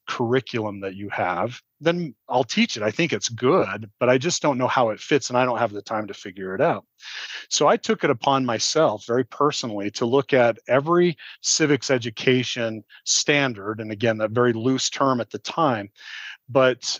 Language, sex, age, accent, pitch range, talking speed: English, male, 40-59, American, 110-135 Hz, 195 wpm